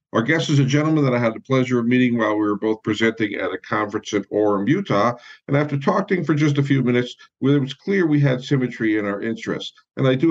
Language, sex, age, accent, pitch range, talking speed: English, male, 50-69, American, 105-140 Hz, 250 wpm